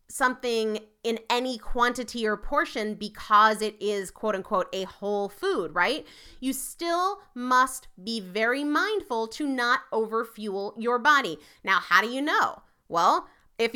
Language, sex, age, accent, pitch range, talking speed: English, female, 30-49, American, 210-295 Hz, 145 wpm